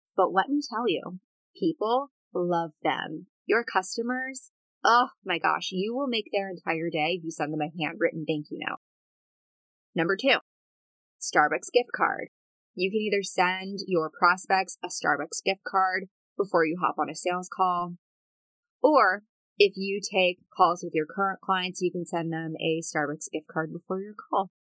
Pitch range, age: 170-225 Hz, 20-39